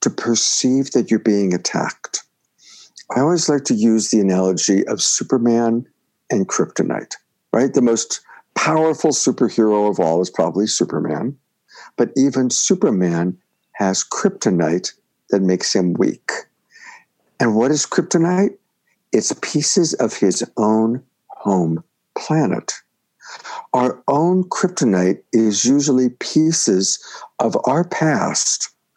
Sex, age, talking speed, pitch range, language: male, 60-79, 115 wpm, 110-150 Hz, English